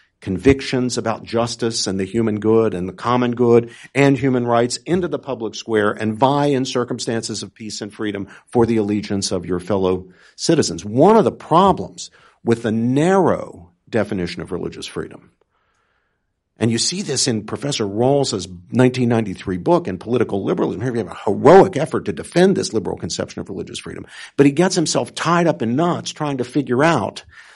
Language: English